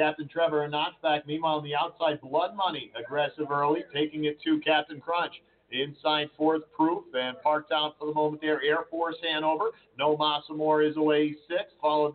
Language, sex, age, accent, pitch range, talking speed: English, male, 50-69, American, 155-175 Hz, 180 wpm